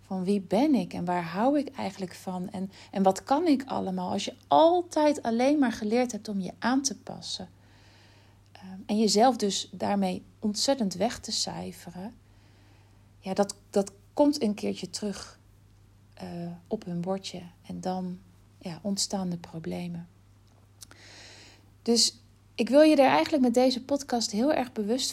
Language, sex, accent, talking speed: Dutch, female, Dutch, 155 wpm